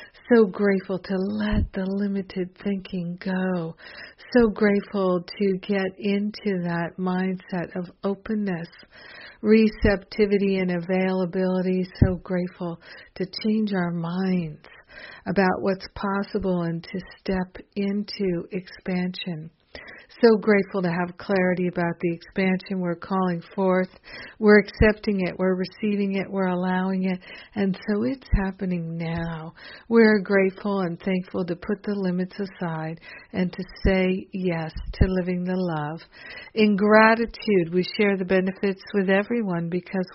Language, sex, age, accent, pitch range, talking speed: English, female, 60-79, American, 180-200 Hz, 125 wpm